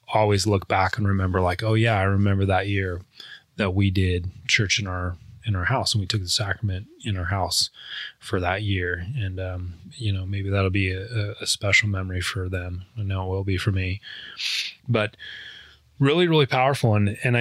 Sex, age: male, 20-39